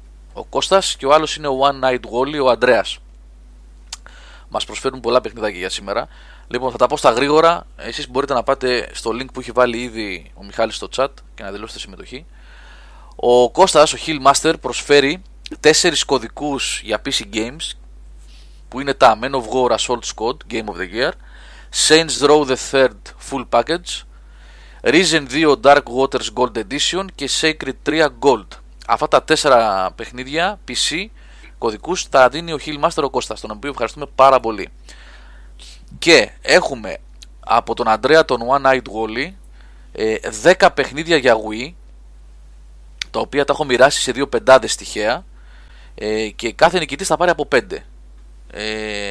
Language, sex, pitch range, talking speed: Greek, male, 100-140 Hz, 155 wpm